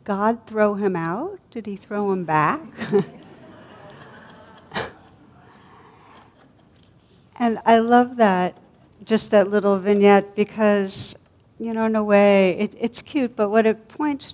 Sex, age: female, 60-79